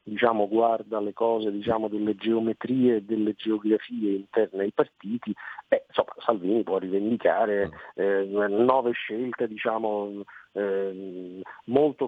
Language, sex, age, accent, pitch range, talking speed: Italian, male, 50-69, native, 100-125 Hz, 120 wpm